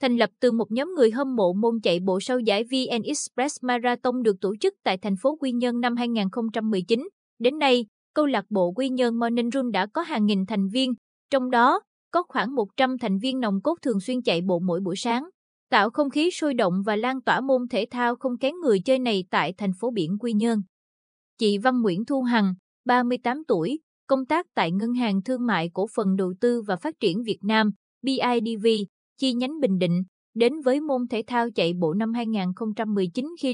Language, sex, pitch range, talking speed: Vietnamese, female, 200-255 Hz, 210 wpm